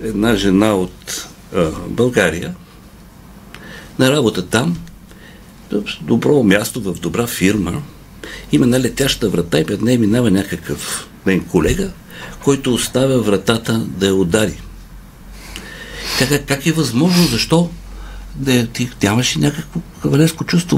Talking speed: 120 wpm